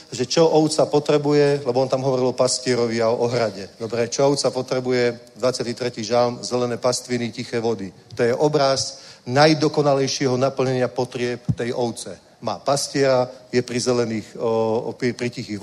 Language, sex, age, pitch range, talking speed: Czech, male, 40-59, 125-155 Hz, 155 wpm